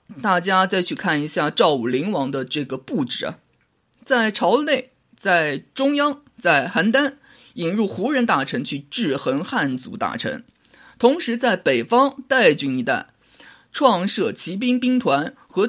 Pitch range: 190-275 Hz